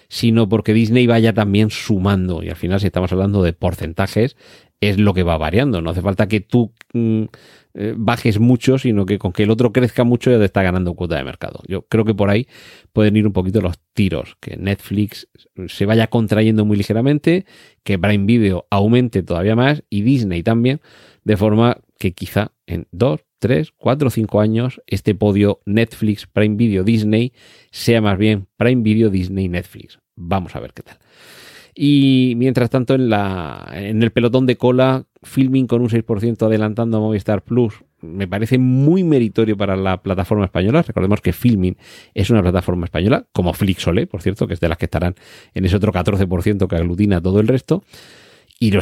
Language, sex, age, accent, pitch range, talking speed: Spanish, male, 40-59, Spanish, 95-115 Hz, 185 wpm